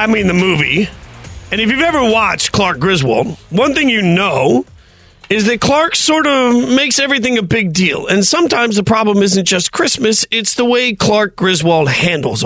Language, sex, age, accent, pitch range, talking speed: English, male, 40-59, American, 150-195 Hz, 185 wpm